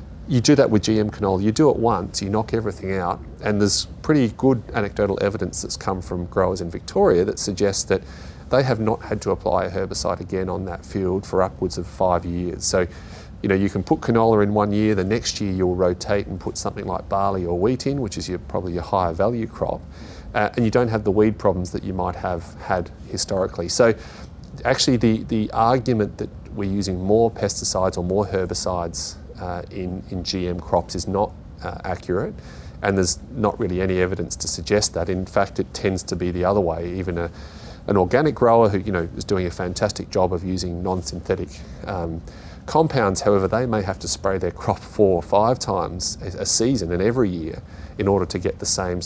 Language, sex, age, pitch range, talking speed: English, male, 30-49, 90-105 Hz, 210 wpm